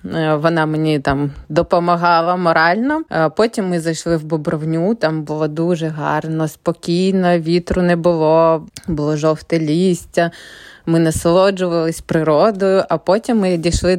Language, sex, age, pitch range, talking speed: Ukrainian, female, 20-39, 160-180 Hz, 120 wpm